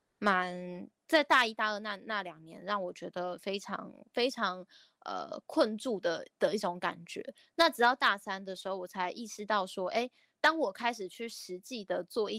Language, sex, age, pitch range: Chinese, female, 10-29, 185-240 Hz